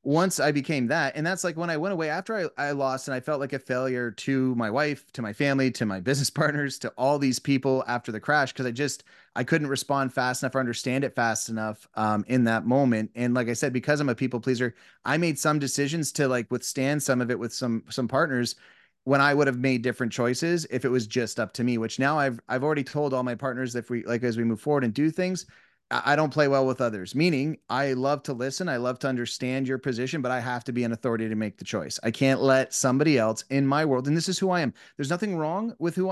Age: 30-49